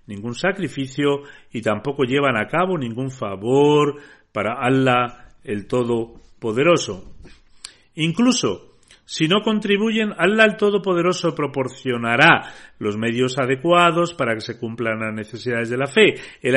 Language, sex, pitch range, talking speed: Spanish, male, 120-160 Hz, 125 wpm